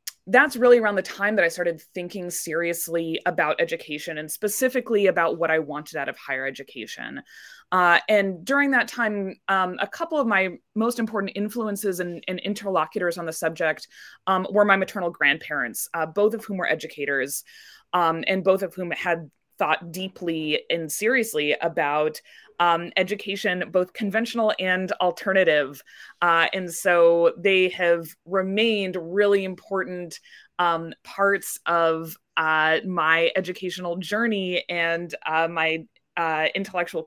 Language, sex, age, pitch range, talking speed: English, female, 20-39, 165-200 Hz, 145 wpm